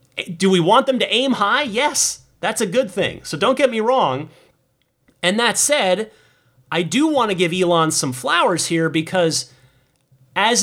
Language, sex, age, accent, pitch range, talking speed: English, male, 30-49, American, 130-190 Hz, 175 wpm